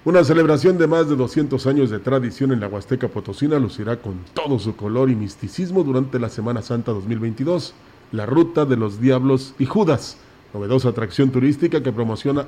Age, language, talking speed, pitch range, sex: 40-59, Spanish, 180 wpm, 115-140 Hz, male